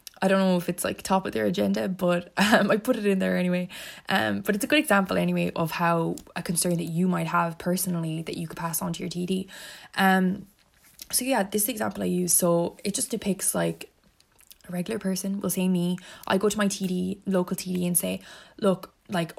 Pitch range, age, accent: 175-200 Hz, 10-29, Irish